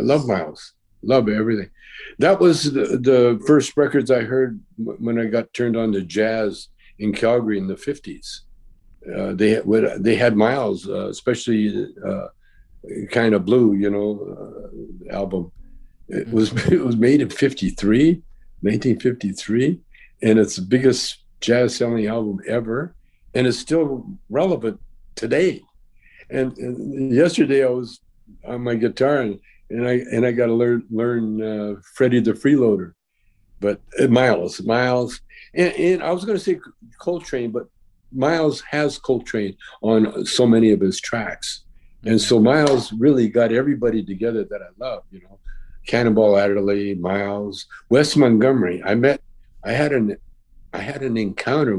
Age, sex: 60-79, male